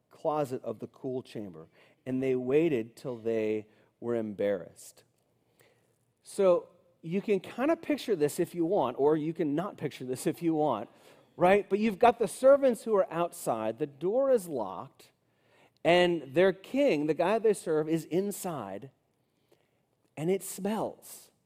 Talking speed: 155 wpm